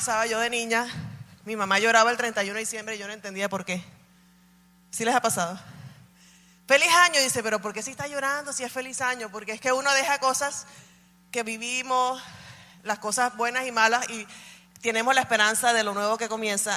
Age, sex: 20-39, female